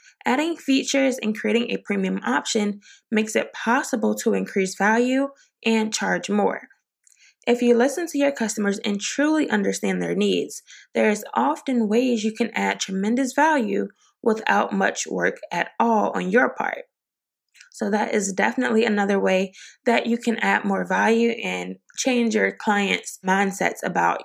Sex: female